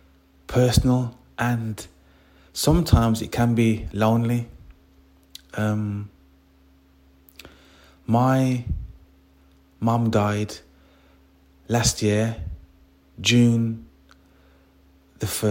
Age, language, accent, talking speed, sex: 30-49, English, British, 60 wpm, male